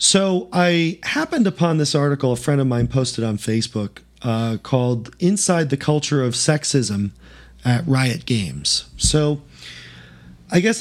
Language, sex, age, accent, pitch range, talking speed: English, male, 40-59, American, 120-160 Hz, 145 wpm